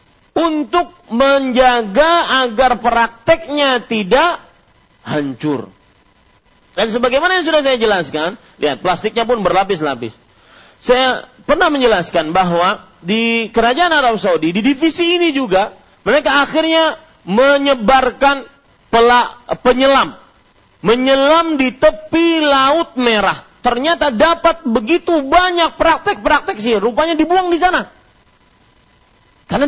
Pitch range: 205-305 Hz